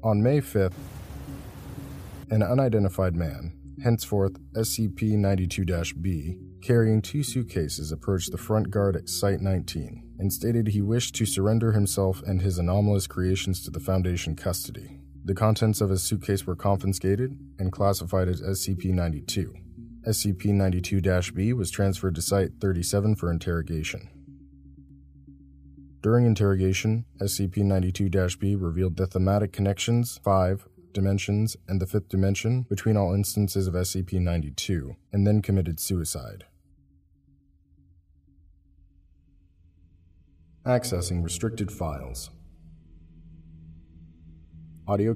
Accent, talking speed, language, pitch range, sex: American, 100 wpm, English, 80-100 Hz, male